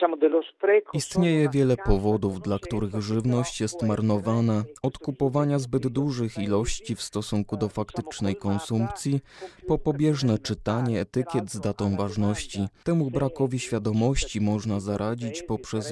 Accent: native